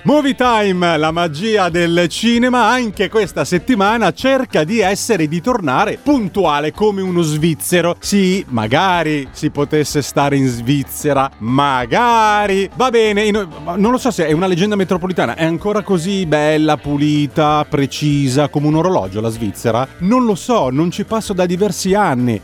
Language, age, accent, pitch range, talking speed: Italian, 30-49, native, 140-200 Hz, 150 wpm